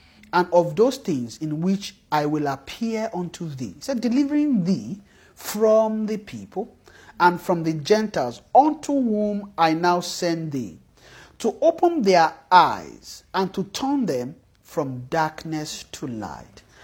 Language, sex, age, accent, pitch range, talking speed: English, male, 40-59, Nigerian, 150-235 Hz, 145 wpm